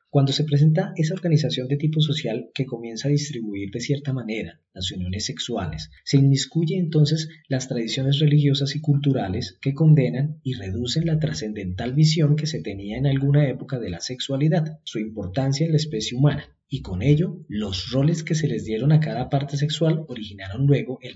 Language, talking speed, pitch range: Spanish, 180 wpm, 110-155 Hz